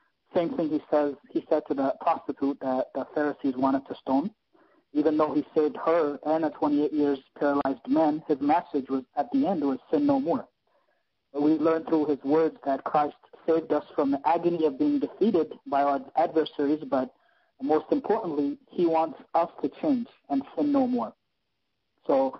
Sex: male